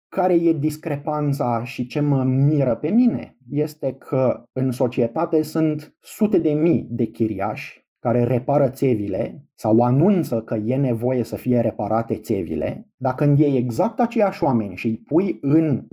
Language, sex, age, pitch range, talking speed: Romanian, male, 30-49, 120-155 Hz, 155 wpm